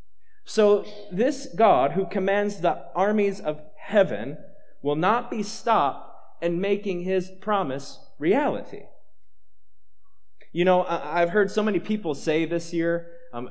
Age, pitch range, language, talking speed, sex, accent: 30-49, 135-200 Hz, English, 130 wpm, male, American